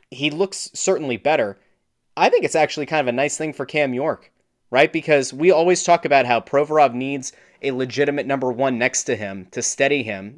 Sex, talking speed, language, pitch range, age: male, 200 wpm, English, 125-185 Hz, 30-49